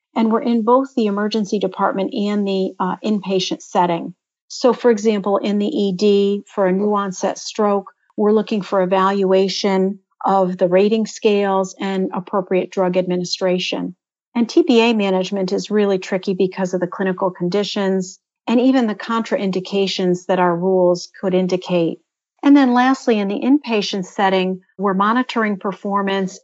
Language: English